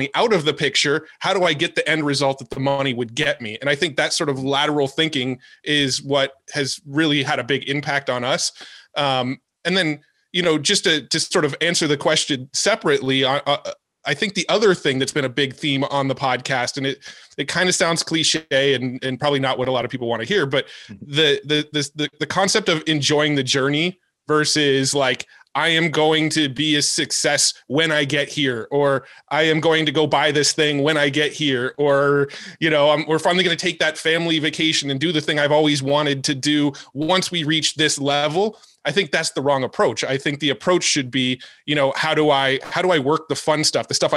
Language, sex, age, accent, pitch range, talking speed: English, male, 20-39, American, 135-160 Hz, 230 wpm